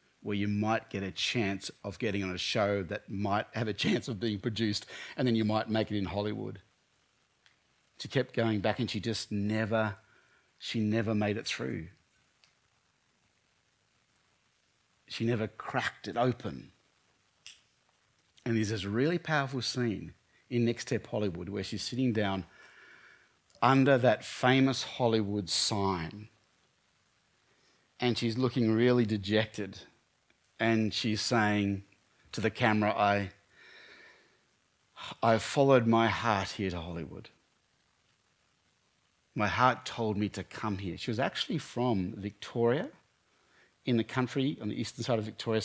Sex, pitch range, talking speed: male, 105-125 Hz, 135 wpm